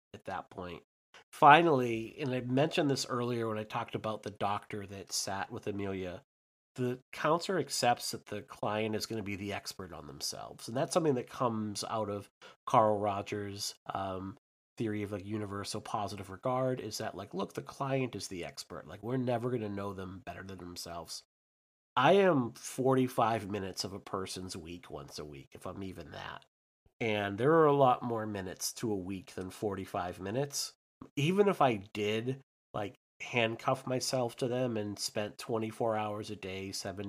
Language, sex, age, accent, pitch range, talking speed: English, male, 30-49, American, 95-125 Hz, 180 wpm